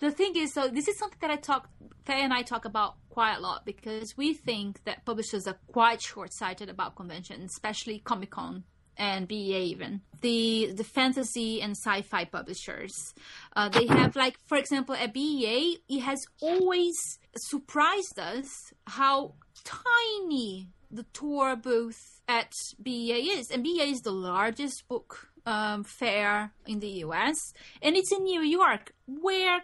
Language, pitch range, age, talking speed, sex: English, 210-280 Hz, 30-49, 155 wpm, female